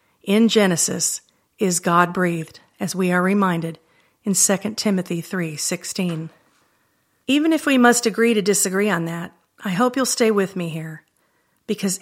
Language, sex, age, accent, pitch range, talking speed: English, female, 40-59, American, 175-215 Hz, 145 wpm